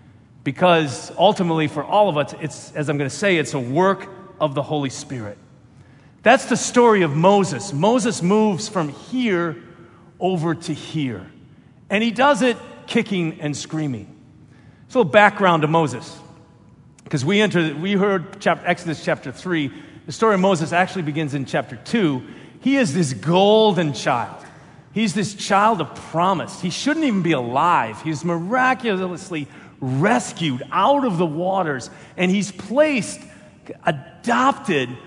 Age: 40-59